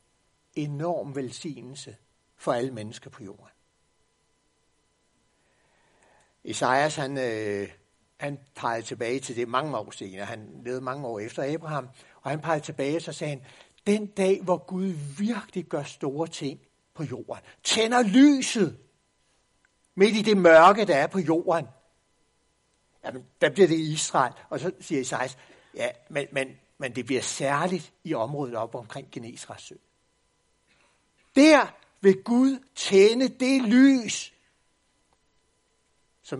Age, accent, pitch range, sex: 60-79, native, 130-185 Hz, male